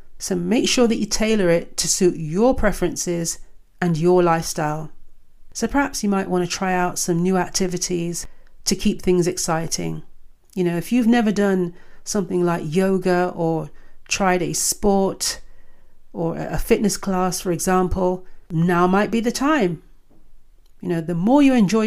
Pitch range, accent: 170-205 Hz, British